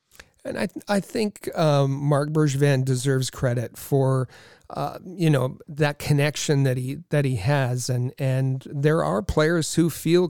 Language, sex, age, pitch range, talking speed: English, male, 40-59, 130-160 Hz, 165 wpm